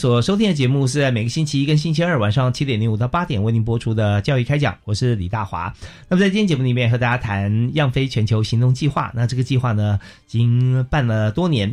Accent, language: native, Chinese